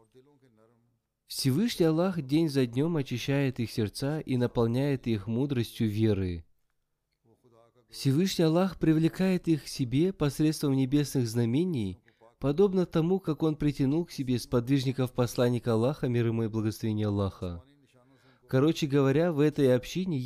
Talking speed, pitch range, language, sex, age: 125 wpm, 115-155 Hz, Russian, male, 20-39